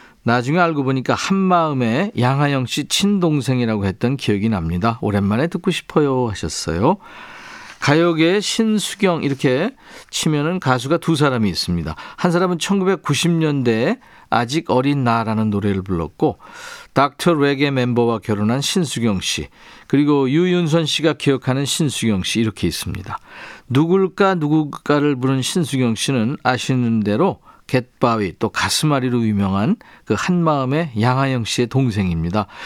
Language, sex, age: Korean, male, 50-69